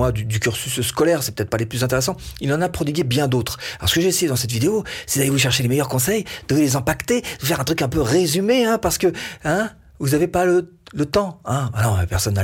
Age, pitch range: 40-59, 110-160 Hz